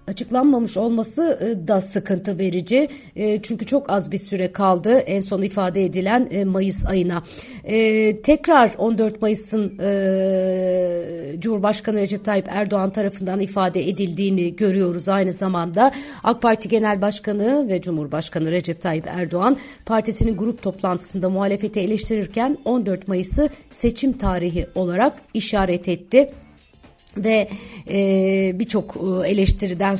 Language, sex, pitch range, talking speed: Turkish, female, 180-220 Hz, 110 wpm